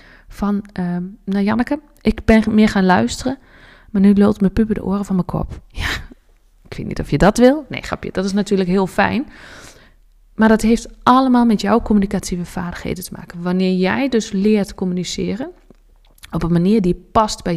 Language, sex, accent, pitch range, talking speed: Dutch, female, Dutch, 180-220 Hz, 190 wpm